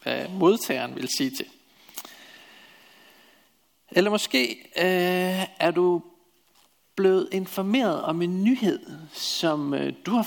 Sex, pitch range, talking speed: male, 150-210 Hz, 105 wpm